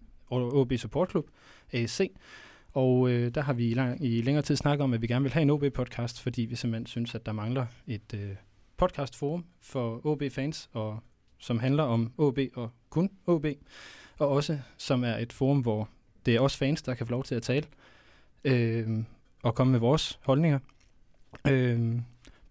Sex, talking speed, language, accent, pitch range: male, 185 wpm, Danish, native, 115-145 Hz